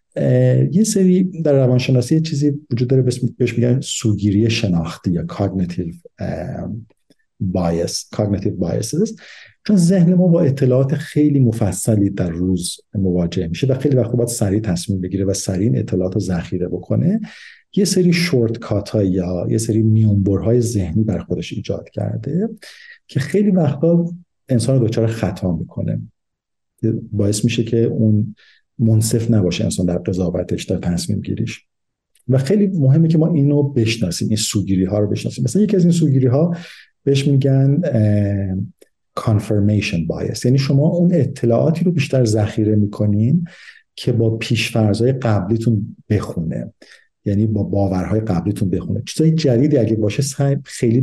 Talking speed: 140 wpm